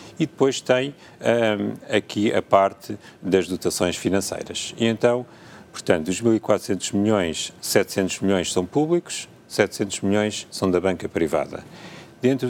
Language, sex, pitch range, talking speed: Portuguese, male, 90-120 Hz, 130 wpm